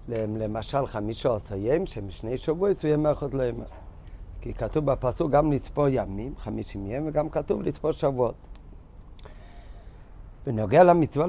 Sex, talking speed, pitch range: male, 135 wpm, 105-145 Hz